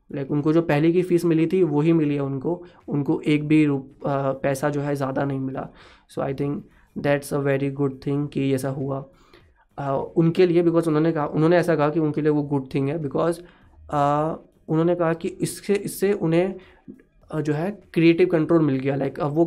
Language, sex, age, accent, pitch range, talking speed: Hindi, male, 20-39, native, 140-175 Hz, 215 wpm